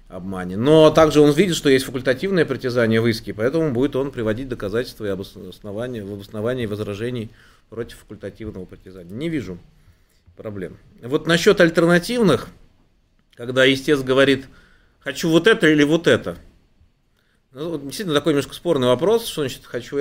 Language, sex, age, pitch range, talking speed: Russian, male, 30-49, 105-145 Hz, 140 wpm